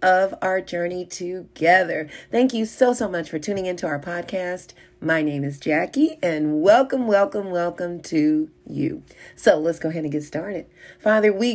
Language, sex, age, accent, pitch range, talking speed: English, female, 40-59, American, 155-190 Hz, 170 wpm